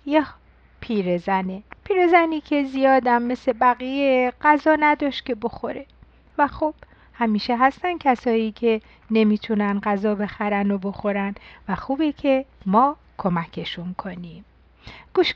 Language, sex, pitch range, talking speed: Persian, female, 200-280 Hz, 115 wpm